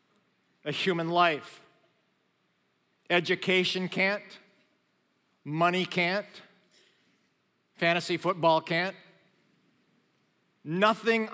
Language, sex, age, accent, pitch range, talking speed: English, male, 50-69, American, 175-205 Hz, 60 wpm